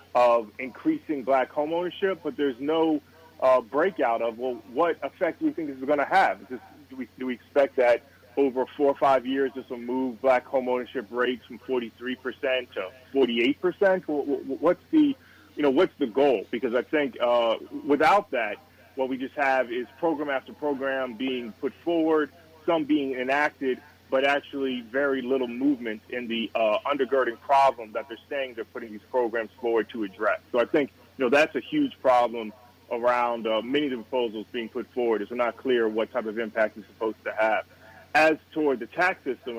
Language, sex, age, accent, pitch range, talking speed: English, male, 30-49, American, 115-140 Hz, 190 wpm